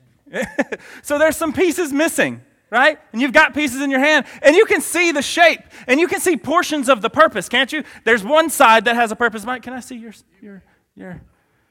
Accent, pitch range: American, 190-295 Hz